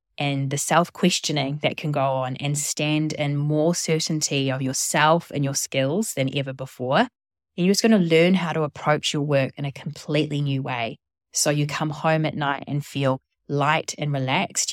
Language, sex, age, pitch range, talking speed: English, female, 20-39, 140-165 Hz, 190 wpm